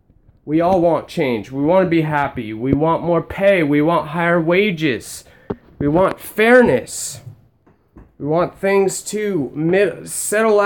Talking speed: 140 wpm